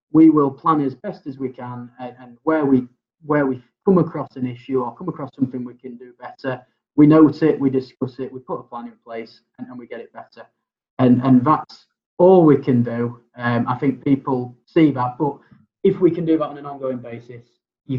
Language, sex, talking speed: English, male, 225 wpm